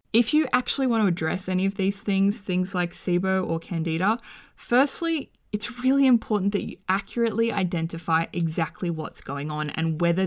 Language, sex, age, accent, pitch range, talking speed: English, female, 20-39, Australian, 170-225 Hz, 170 wpm